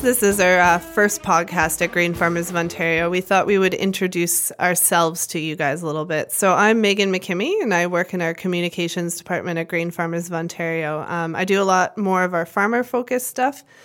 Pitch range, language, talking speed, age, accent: 170-190 Hz, English, 210 wpm, 20-39, American